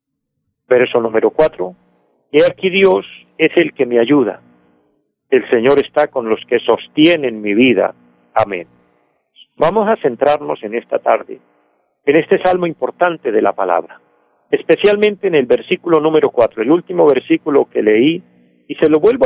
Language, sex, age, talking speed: Spanish, male, 50-69, 155 wpm